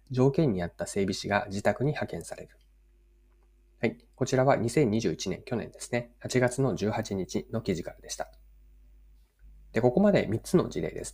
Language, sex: Japanese, male